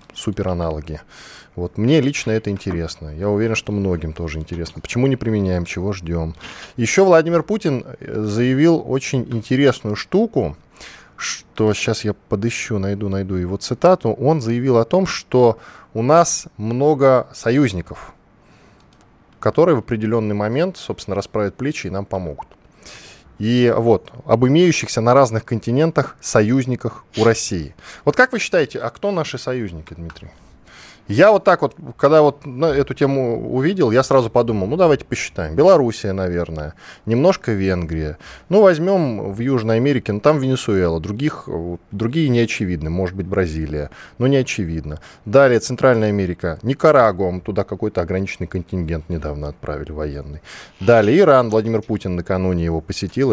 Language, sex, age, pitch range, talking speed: Russian, male, 10-29, 90-130 Hz, 140 wpm